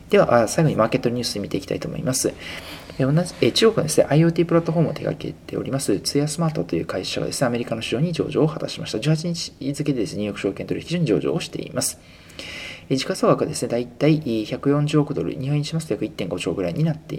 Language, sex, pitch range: Japanese, male, 120-155 Hz